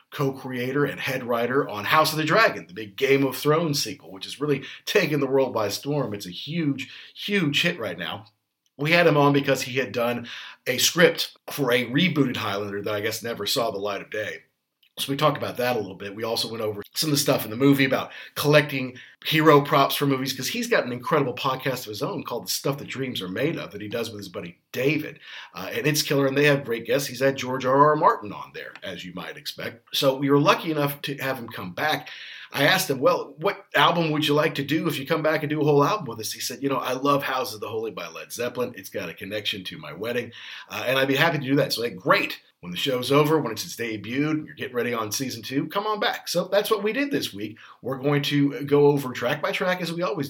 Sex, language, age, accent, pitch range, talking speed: male, English, 40-59, American, 125-150 Hz, 265 wpm